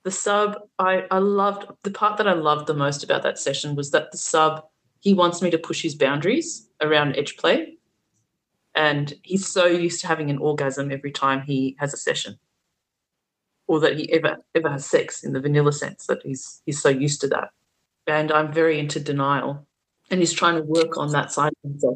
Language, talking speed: English, 210 wpm